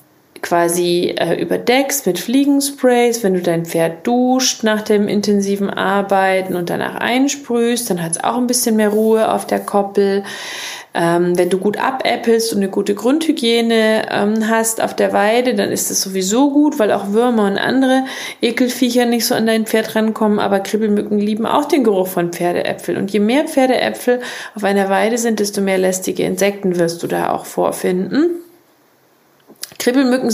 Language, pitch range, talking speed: German, 190-250 Hz, 170 wpm